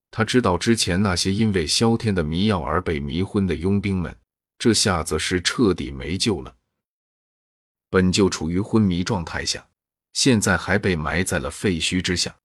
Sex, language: male, Chinese